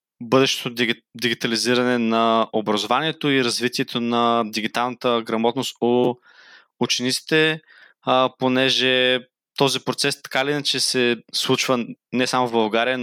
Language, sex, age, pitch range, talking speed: Bulgarian, male, 20-39, 115-130 Hz, 105 wpm